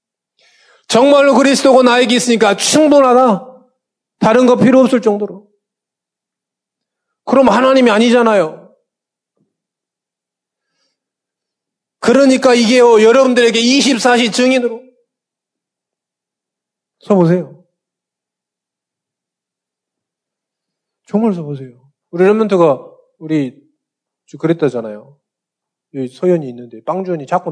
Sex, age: male, 30-49